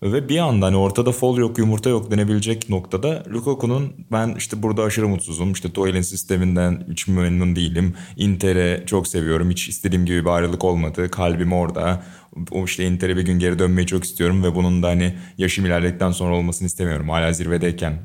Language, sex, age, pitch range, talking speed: Turkish, male, 20-39, 90-115 Hz, 175 wpm